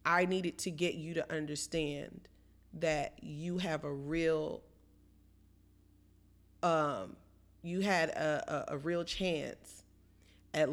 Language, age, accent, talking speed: English, 30-49, American, 115 wpm